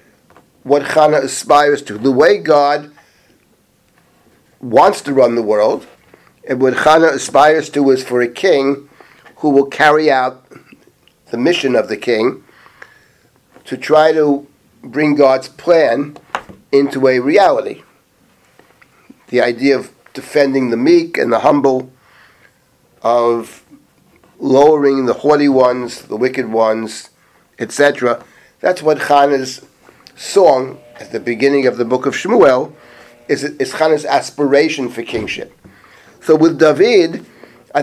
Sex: male